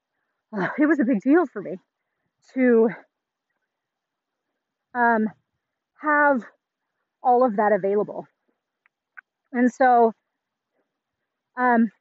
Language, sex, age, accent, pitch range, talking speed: English, female, 30-49, American, 215-280 Hz, 85 wpm